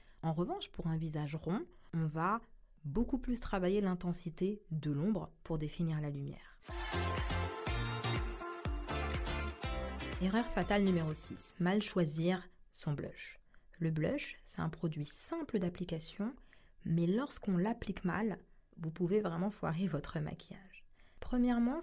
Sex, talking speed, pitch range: female, 120 wpm, 165-215 Hz